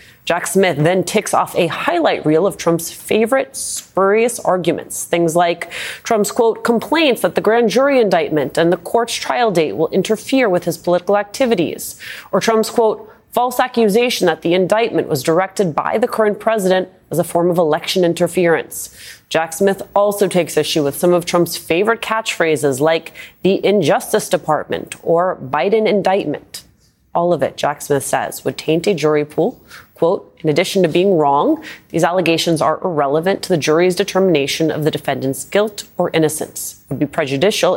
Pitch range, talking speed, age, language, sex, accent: 155-200 Hz, 170 wpm, 30-49, English, female, American